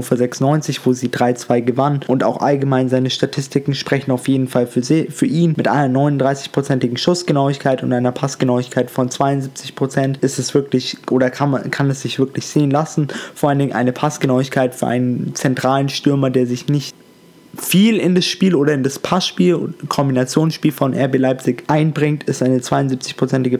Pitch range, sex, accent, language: 125-145 Hz, male, German, German